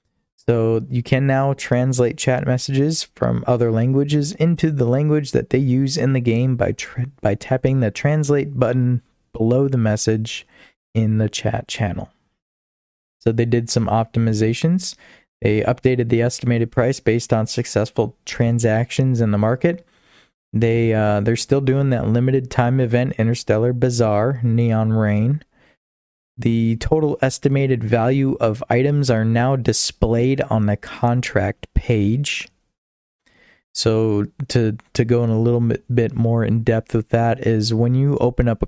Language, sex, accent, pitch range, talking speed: English, male, American, 110-130 Hz, 150 wpm